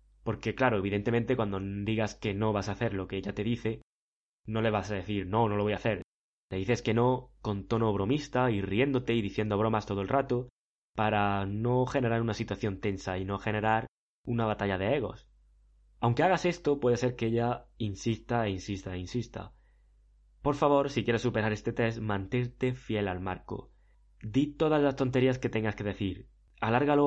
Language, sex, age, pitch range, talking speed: Spanish, male, 20-39, 100-125 Hz, 190 wpm